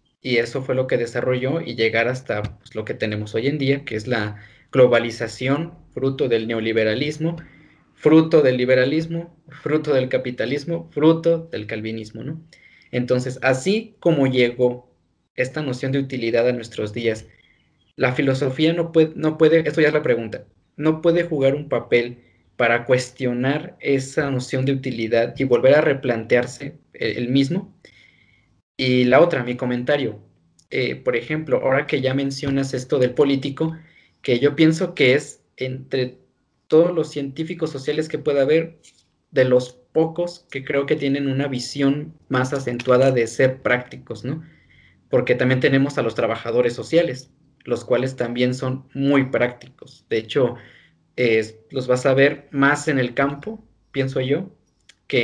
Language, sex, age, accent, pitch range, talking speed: Spanish, male, 20-39, Mexican, 120-150 Hz, 155 wpm